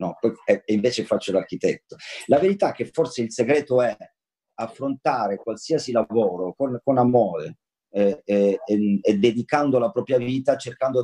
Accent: native